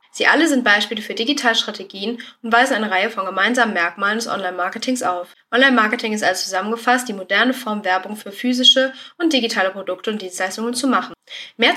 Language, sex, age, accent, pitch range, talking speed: German, female, 20-39, German, 190-250 Hz, 175 wpm